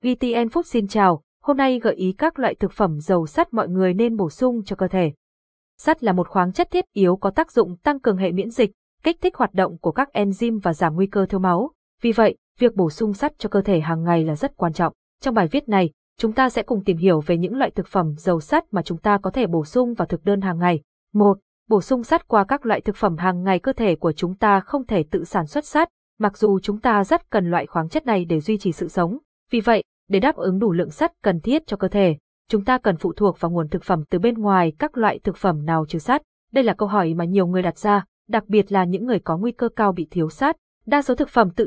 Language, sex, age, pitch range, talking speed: Vietnamese, female, 20-39, 180-235 Hz, 270 wpm